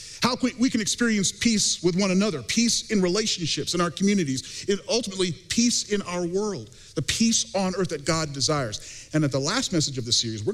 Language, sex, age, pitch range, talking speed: English, male, 40-59, 130-180 Hz, 205 wpm